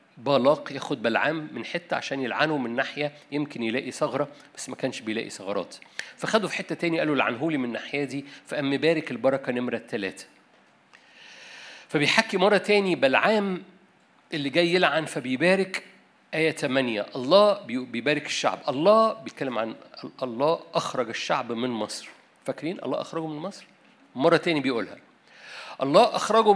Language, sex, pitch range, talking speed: Arabic, male, 145-205 Hz, 140 wpm